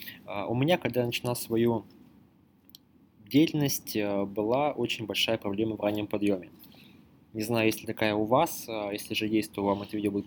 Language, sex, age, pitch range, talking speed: English, male, 20-39, 105-125 Hz, 170 wpm